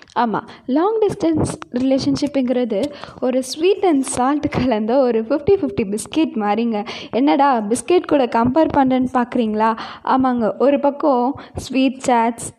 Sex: female